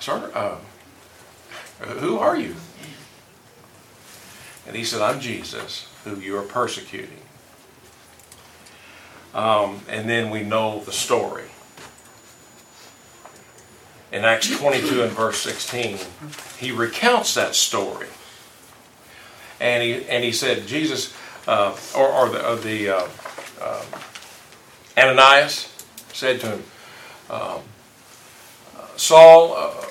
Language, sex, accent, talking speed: English, male, American, 100 wpm